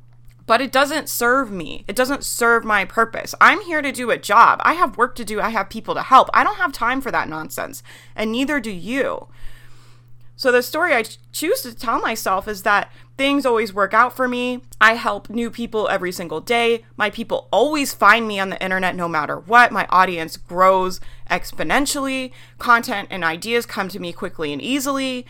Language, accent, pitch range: English, American, 185-250 Hz